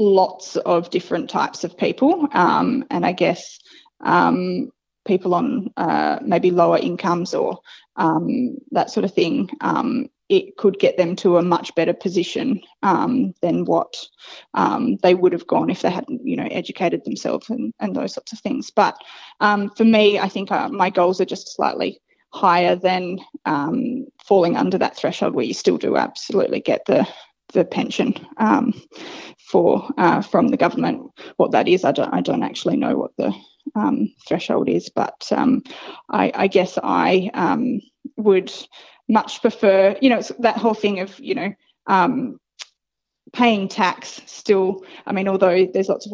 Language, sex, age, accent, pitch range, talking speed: English, female, 20-39, Australian, 185-260 Hz, 170 wpm